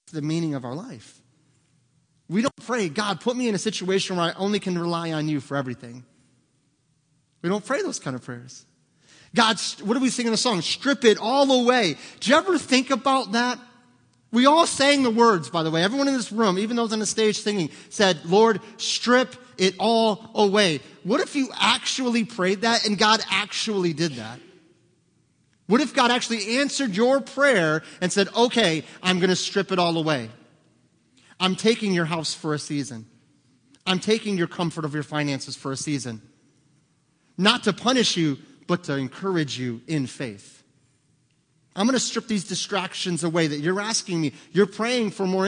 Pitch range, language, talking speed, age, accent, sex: 150-225 Hz, English, 190 wpm, 30-49, American, male